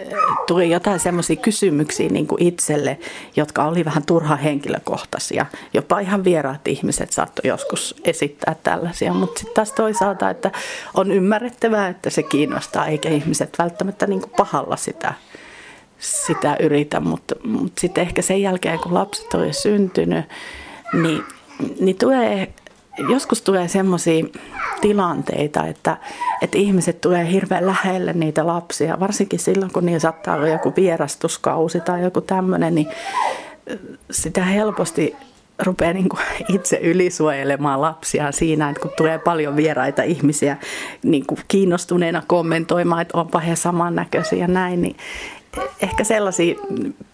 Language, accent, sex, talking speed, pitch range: Finnish, native, female, 130 wpm, 160-195 Hz